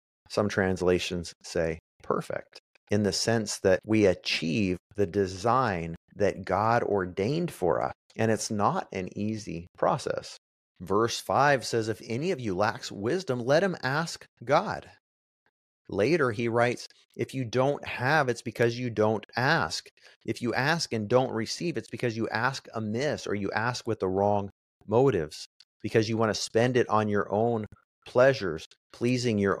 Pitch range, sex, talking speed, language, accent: 100-130 Hz, male, 160 wpm, English, American